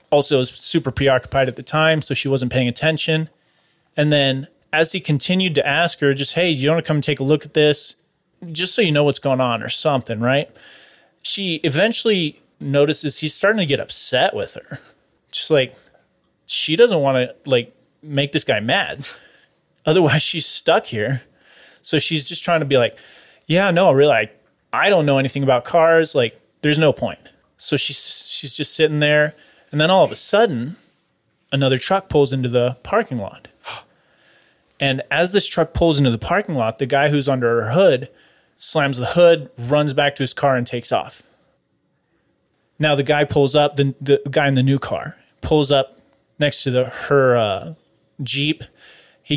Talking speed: 185 wpm